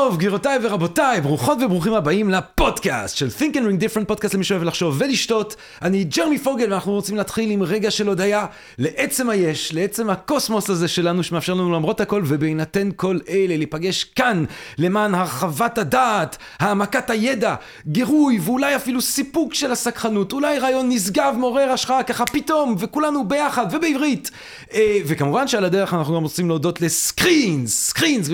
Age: 40-59